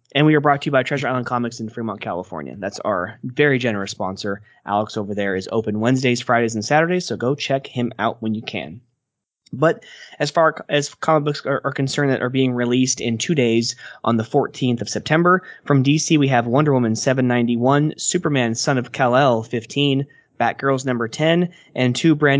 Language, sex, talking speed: English, male, 200 wpm